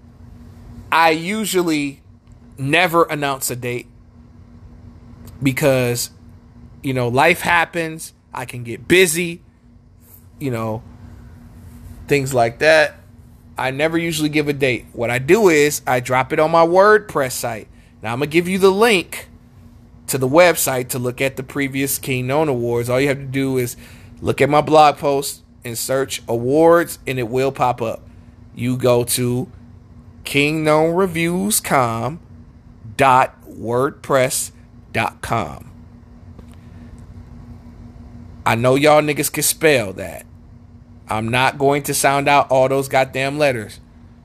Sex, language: male, English